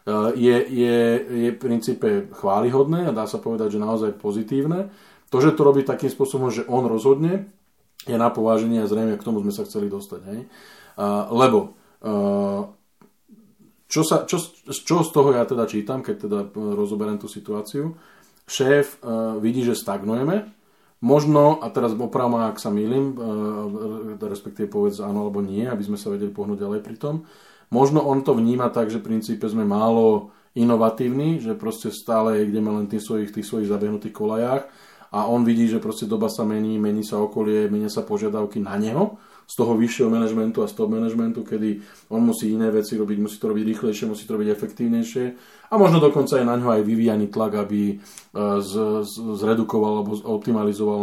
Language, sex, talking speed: Slovak, male, 170 wpm